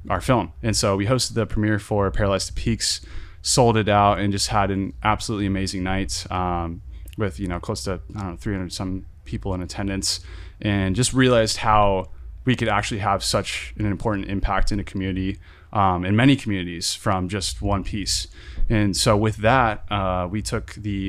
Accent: American